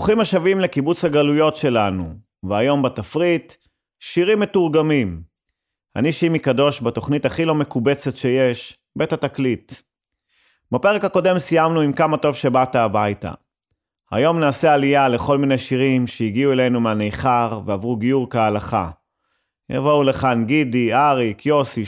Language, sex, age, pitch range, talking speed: Hebrew, male, 30-49, 115-150 Hz, 120 wpm